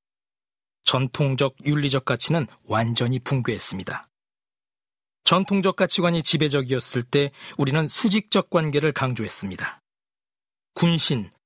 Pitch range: 135-185 Hz